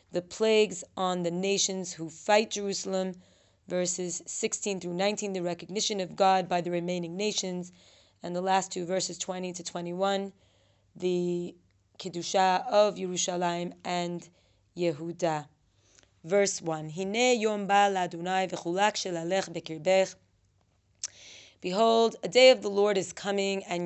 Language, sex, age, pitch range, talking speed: English, female, 30-49, 175-200 Hz, 115 wpm